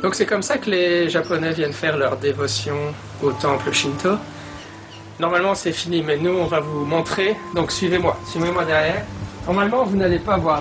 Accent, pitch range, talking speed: French, 85-135 Hz, 180 wpm